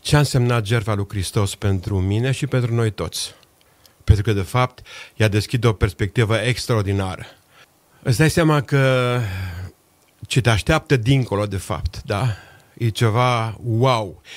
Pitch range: 105-135 Hz